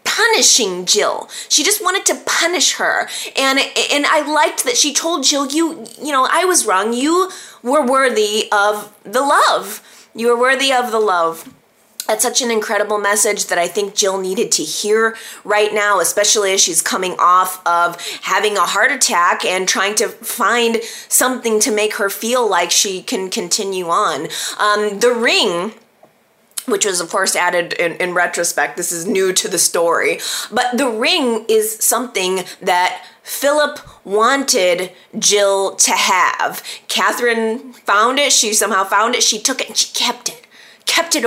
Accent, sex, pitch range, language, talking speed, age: American, female, 195-260 Hz, English, 170 wpm, 20-39